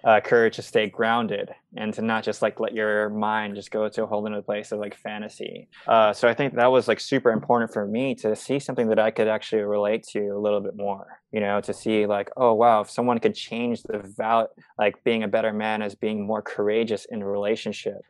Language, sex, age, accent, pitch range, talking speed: English, male, 20-39, American, 105-115 Hz, 240 wpm